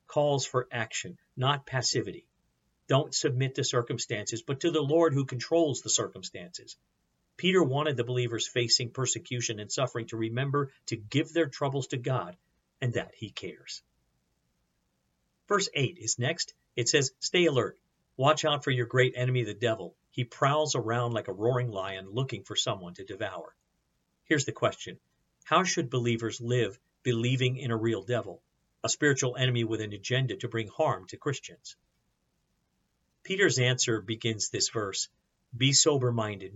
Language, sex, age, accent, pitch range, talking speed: English, male, 50-69, American, 110-130 Hz, 155 wpm